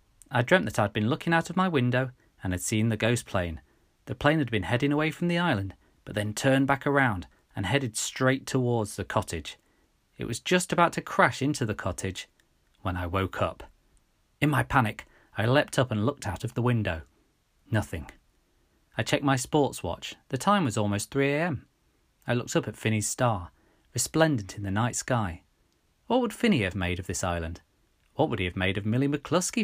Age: 40-59